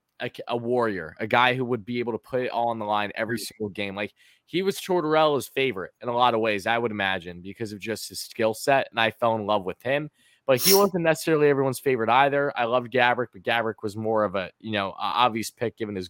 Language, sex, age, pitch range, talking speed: English, male, 20-39, 105-130 Hz, 250 wpm